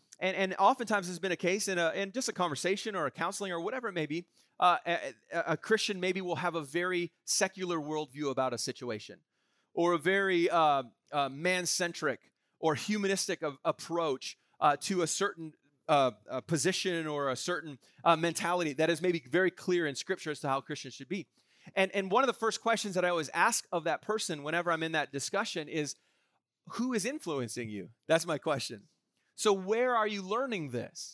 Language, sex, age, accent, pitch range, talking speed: English, male, 30-49, American, 155-200 Hz, 195 wpm